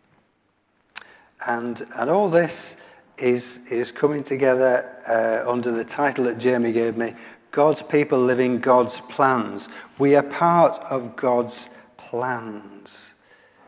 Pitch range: 115-150 Hz